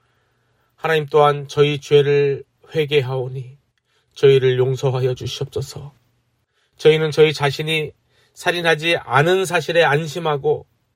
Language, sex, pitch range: Korean, male, 130-160 Hz